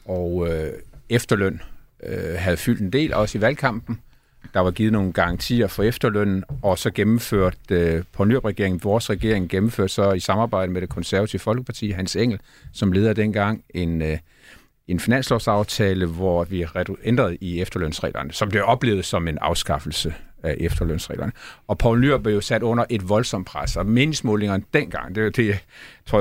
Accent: native